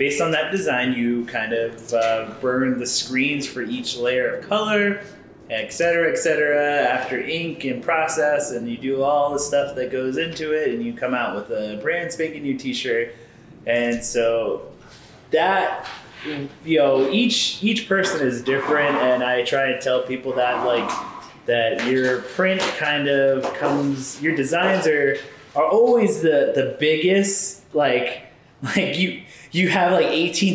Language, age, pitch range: English, 20-39, 125-175 Hz